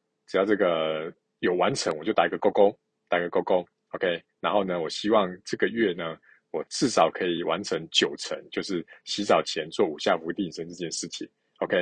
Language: Chinese